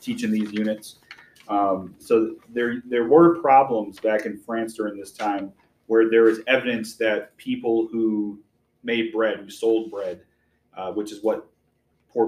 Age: 30-49